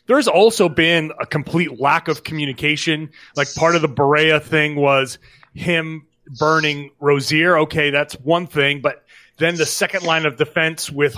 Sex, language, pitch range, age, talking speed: male, English, 145-175 Hz, 30-49, 160 wpm